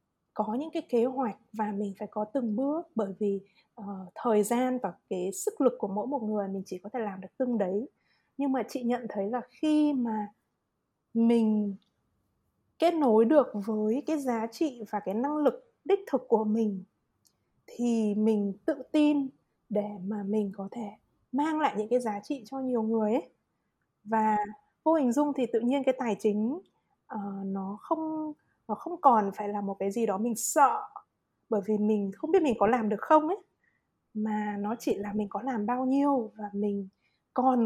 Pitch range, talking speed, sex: 210-280 Hz, 195 wpm, female